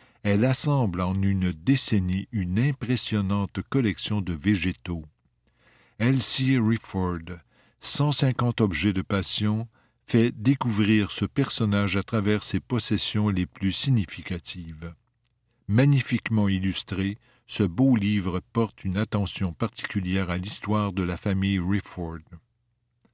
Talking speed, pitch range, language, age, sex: 110 wpm, 95-120 Hz, French, 60-79, male